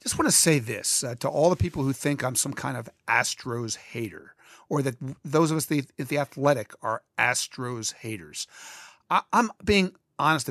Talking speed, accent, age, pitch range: 195 wpm, American, 50-69, 115-150 Hz